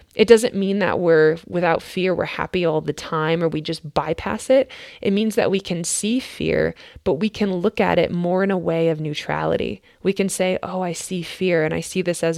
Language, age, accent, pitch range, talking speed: English, 20-39, American, 170-205 Hz, 235 wpm